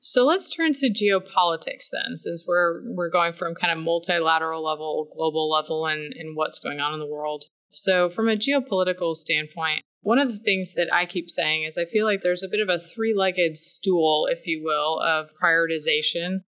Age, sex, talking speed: 20-39, female, 205 wpm